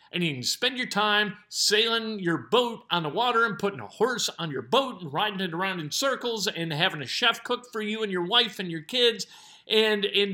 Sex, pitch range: male, 170-230 Hz